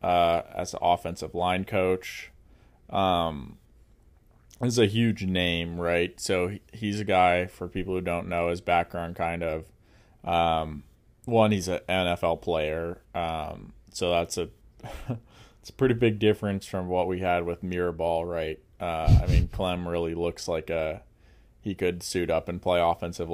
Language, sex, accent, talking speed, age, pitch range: English, male, American, 160 wpm, 20-39, 85-100 Hz